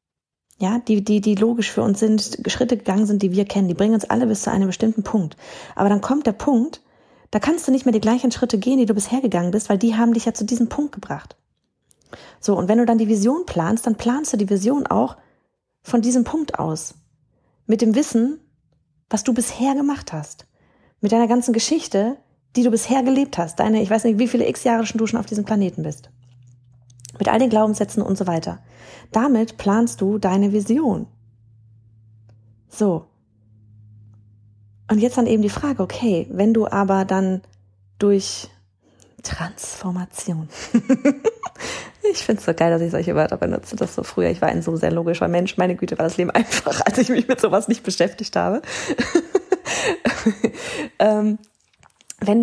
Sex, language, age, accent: female, German, 30-49, German